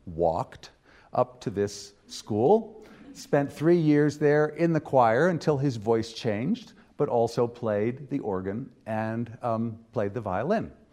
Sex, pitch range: male, 105-140 Hz